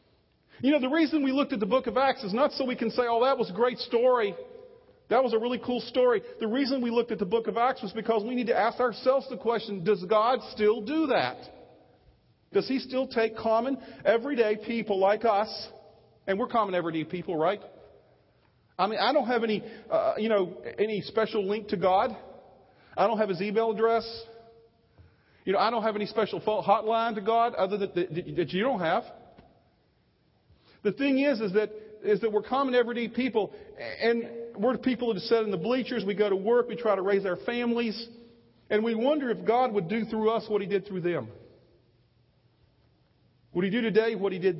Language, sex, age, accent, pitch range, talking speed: English, male, 40-59, American, 200-245 Hz, 205 wpm